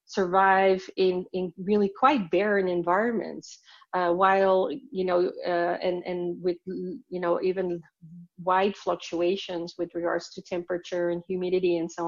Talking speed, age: 140 wpm, 40-59